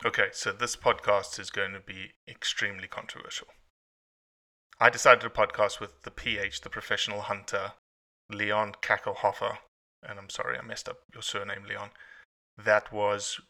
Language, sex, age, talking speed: English, male, 20-39, 145 wpm